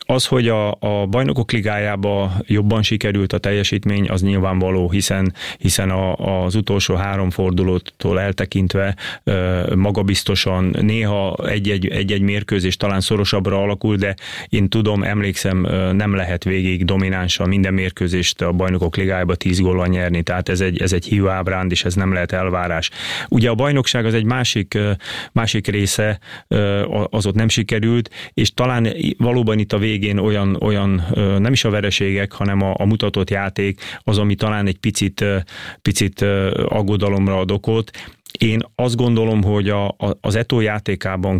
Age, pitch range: 30-49, 95-105 Hz